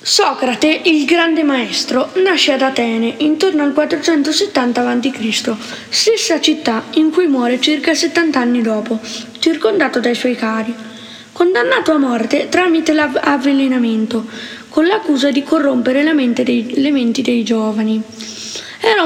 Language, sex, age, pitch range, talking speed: Italian, female, 20-39, 235-305 Hz, 130 wpm